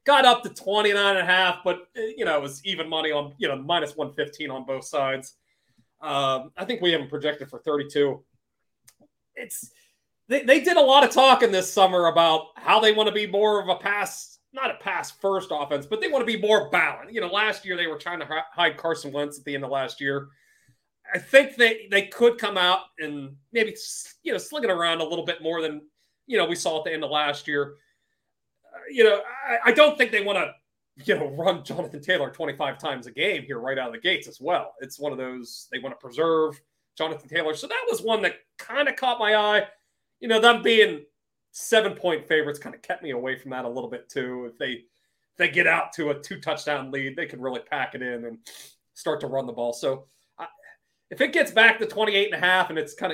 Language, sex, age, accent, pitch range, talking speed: English, male, 30-49, American, 145-210 Hz, 230 wpm